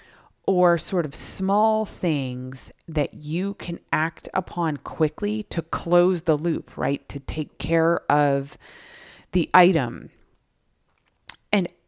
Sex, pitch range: female, 140-170 Hz